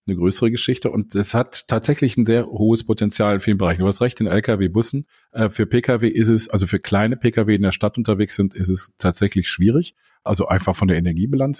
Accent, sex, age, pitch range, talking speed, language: German, male, 50-69, 90-110 Hz, 220 wpm, German